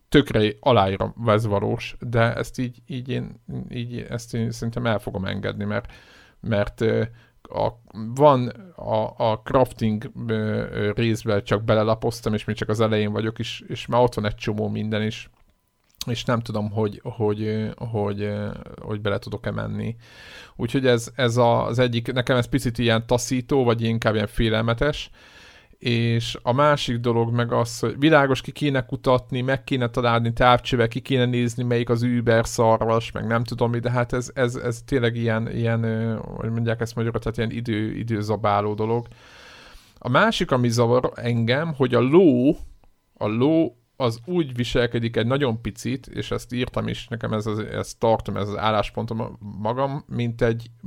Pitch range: 110-125 Hz